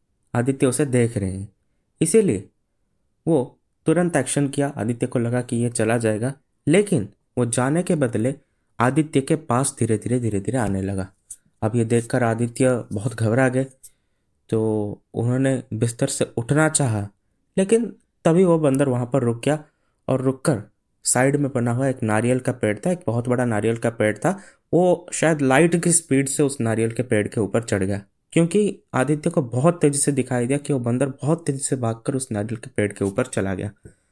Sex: male